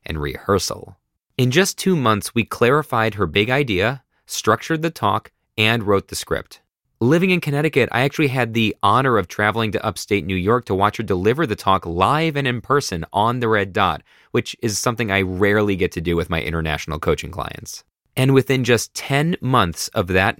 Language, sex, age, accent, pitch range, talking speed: English, male, 30-49, American, 95-140 Hz, 195 wpm